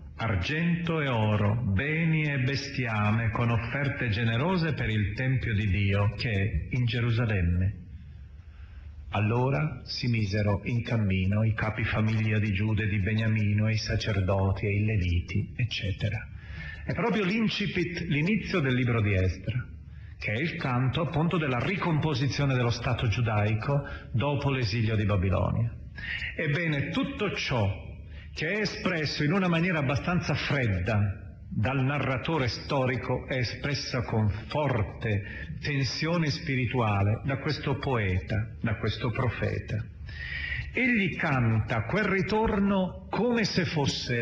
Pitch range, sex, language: 105-150 Hz, male, Italian